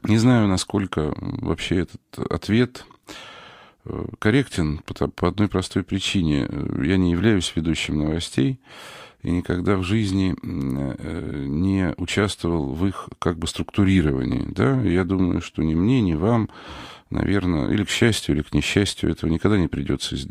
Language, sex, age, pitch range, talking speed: Russian, male, 40-59, 80-105 Hz, 135 wpm